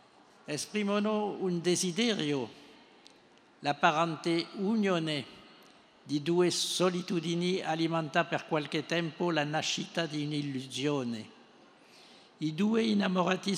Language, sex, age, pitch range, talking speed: Italian, male, 60-79, 150-175 Hz, 85 wpm